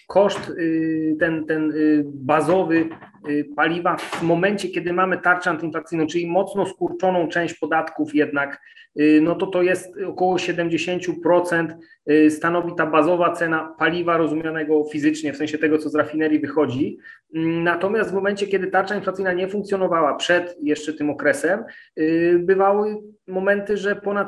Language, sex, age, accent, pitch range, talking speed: Polish, male, 30-49, native, 155-175 Hz, 130 wpm